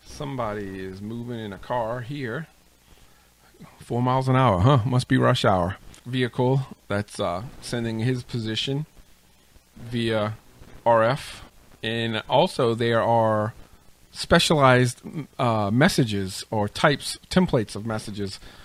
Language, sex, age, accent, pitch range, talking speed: English, male, 40-59, American, 105-135 Hz, 115 wpm